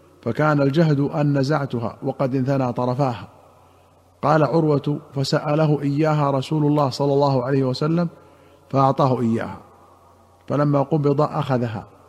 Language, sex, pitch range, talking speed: Arabic, male, 125-145 Hz, 110 wpm